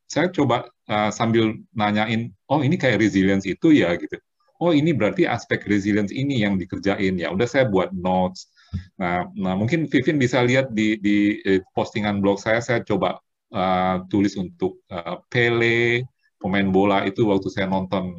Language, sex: Indonesian, male